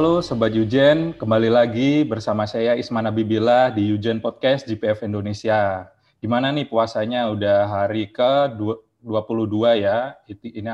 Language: Indonesian